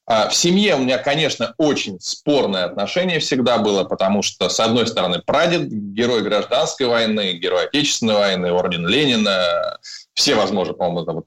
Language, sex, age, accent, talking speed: Russian, male, 20-39, native, 140 wpm